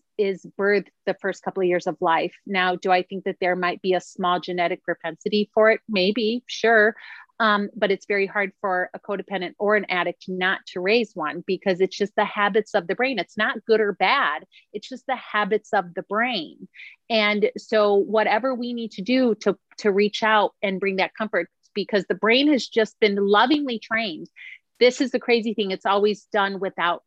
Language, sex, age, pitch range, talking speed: English, female, 30-49, 195-240 Hz, 205 wpm